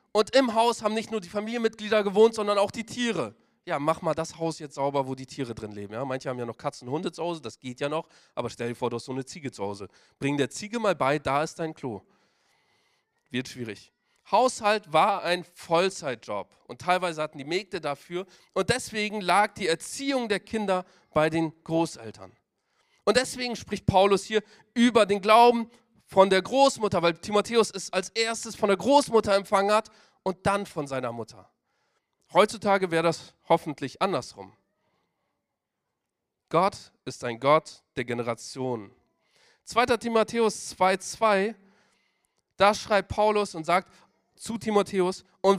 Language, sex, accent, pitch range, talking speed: German, male, German, 150-220 Hz, 170 wpm